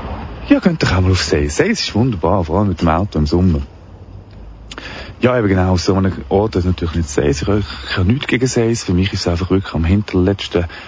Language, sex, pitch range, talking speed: English, male, 85-110 Hz, 230 wpm